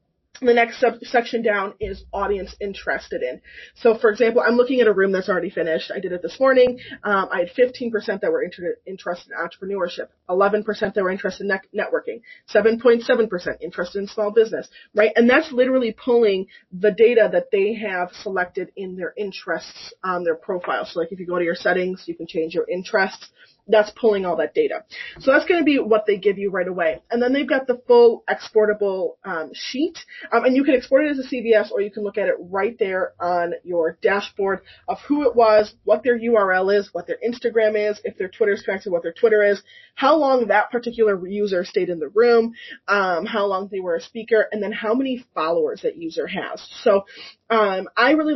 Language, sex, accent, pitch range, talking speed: English, female, American, 190-245 Hz, 210 wpm